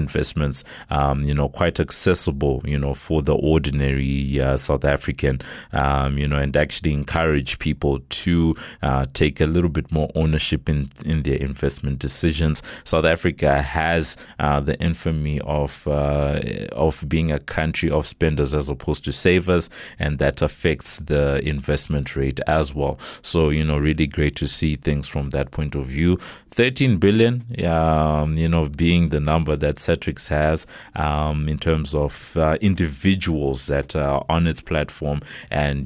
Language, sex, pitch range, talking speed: English, male, 70-80 Hz, 160 wpm